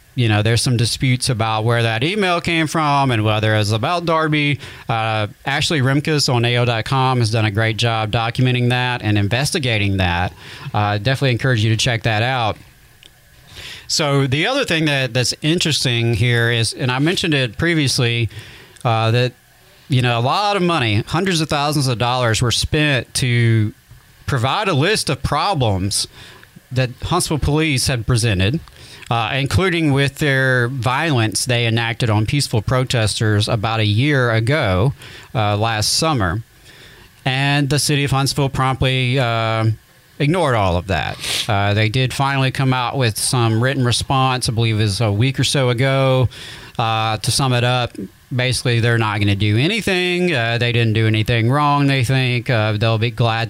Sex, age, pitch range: male, 40-59, 115-135 Hz